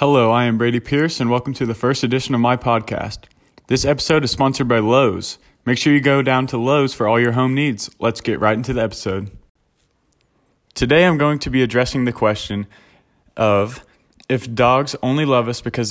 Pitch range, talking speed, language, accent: 110-135 Hz, 200 wpm, English, American